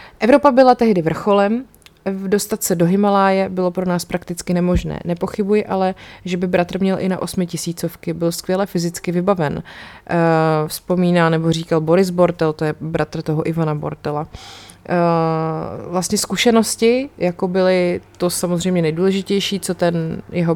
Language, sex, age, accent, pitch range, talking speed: Czech, female, 20-39, native, 170-200 Hz, 140 wpm